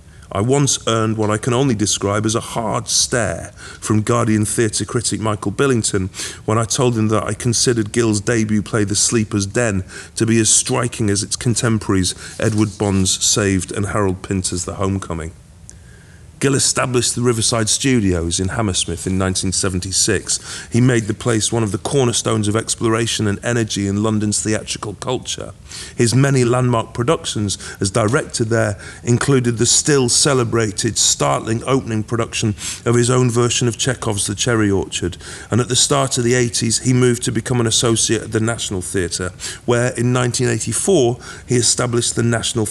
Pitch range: 95-120 Hz